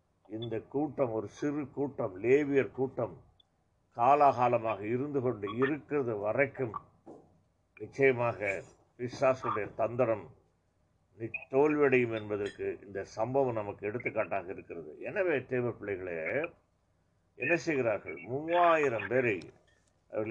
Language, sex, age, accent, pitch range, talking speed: Tamil, male, 50-69, native, 105-145 Hz, 90 wpm